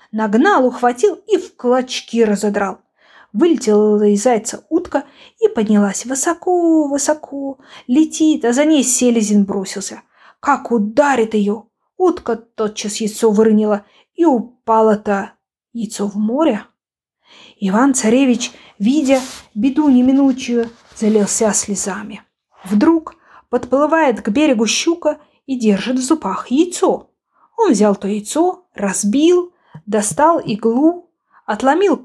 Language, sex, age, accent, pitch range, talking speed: Ukrainian, female, 20-39, native, 215-305 Hz, 105 wpm